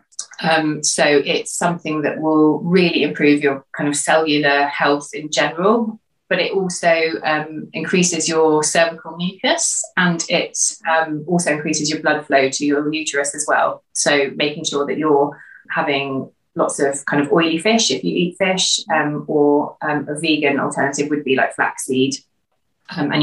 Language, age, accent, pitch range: English, 30-49, British, 145-170 Hz